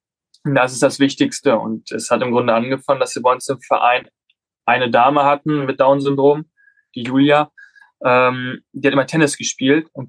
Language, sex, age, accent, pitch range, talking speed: German, male, 10-29, German, 130-155 Hz, 180 wpm